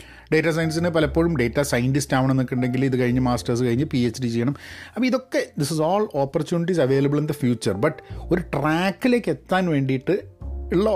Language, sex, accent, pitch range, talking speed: Malayalam, male, native, 110-150 Hz, 175 wpm